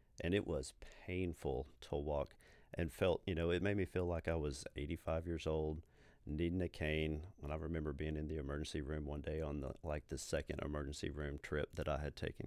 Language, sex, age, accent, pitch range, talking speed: English, male, 40-59, American, 75-85 Hz, 210 wpm